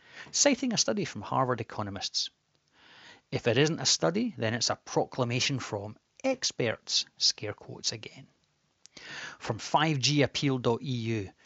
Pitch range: 110-145 Hz